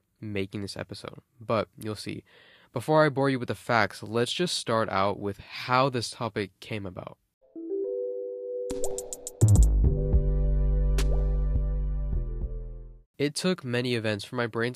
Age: 20-39